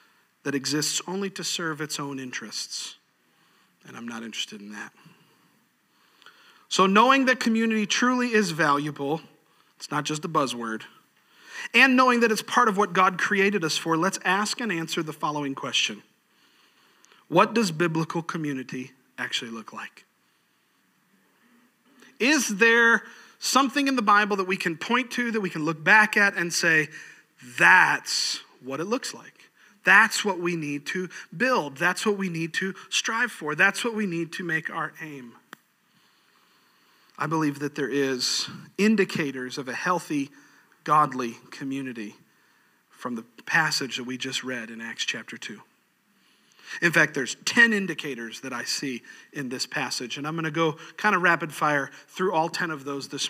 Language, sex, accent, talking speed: English, male, American, 160 wpm